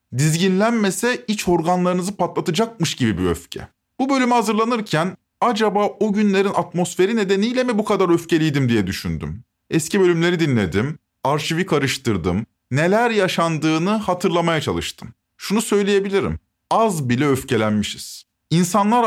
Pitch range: 155-210 Hz